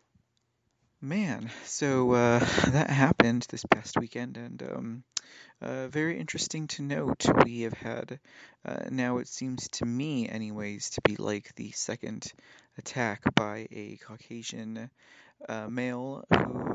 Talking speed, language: 135 wpm, English